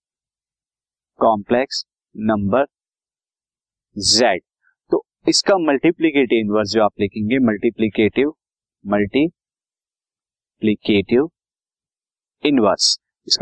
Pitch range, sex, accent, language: 110-145 Hz, male, native, Hindi